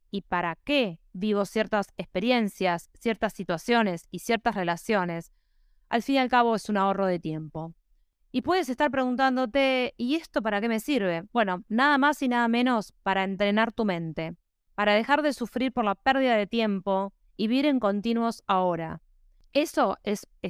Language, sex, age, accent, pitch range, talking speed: Spanish, female, 20-39, Argentinian, 185-235 Hz, 165 wpm